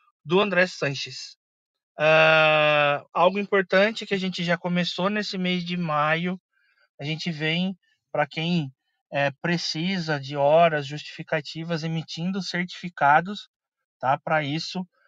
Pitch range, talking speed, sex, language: 150-185 Hz, 120 wpm, male, Portuguese